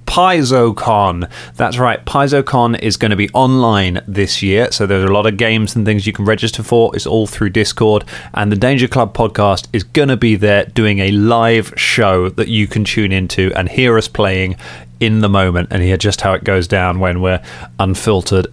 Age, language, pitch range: 30-49, English, 95-115 Hz